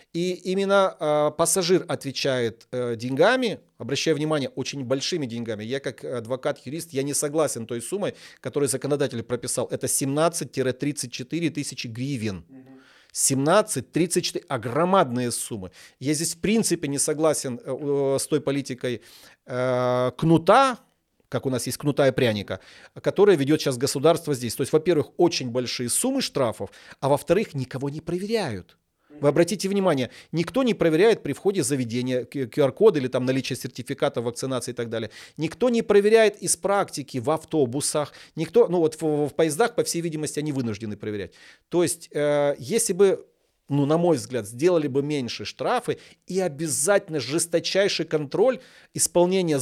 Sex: male